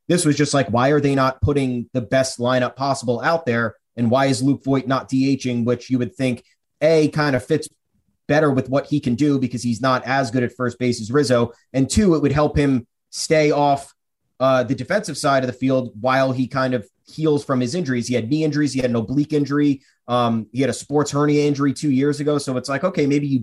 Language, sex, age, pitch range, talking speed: English, male, 30-49, 125-145 Hz, 240 wpm